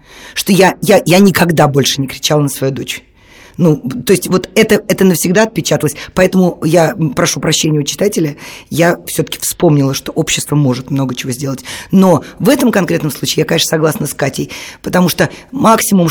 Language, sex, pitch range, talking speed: Russian, female, 145-175 Hz, 180 wpm